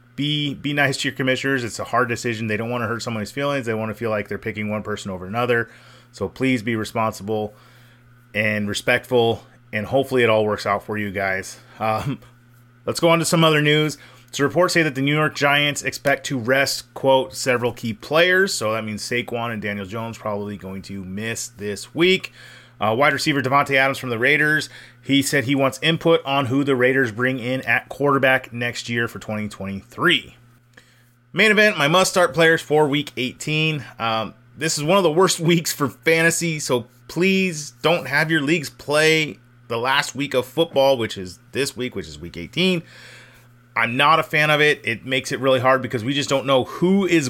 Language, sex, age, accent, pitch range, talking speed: English, male, 30-49, American, 115-145 Hz, 205 wpm